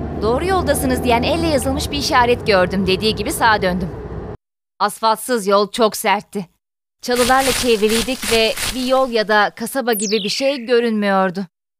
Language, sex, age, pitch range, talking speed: Turkish, female, 20-39, 210-270 Hz, 140 wpm